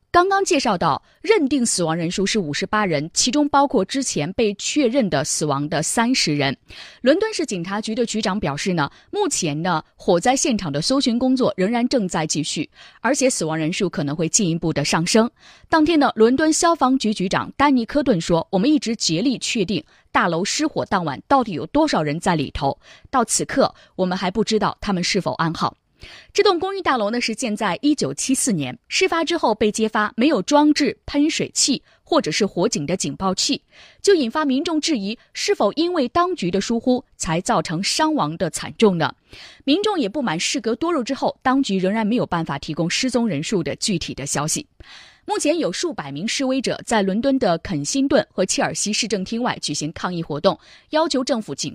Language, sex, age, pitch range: Chinese, female, 20-39, 170-275 Hz